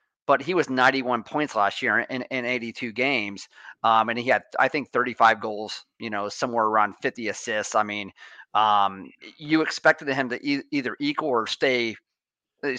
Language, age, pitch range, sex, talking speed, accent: English, 30-49, 110-135 Hz, male, 180 wpm, American